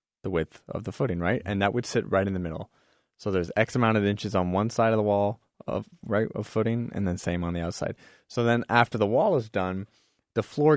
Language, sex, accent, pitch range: English, male, American, 95-120 Hz